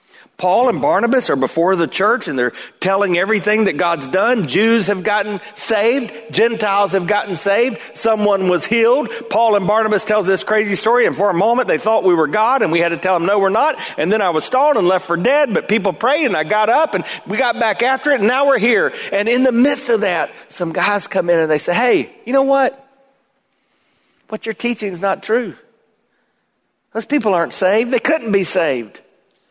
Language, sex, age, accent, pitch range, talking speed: English, male, 40-59, American, 170-230 Hz, 220 wpm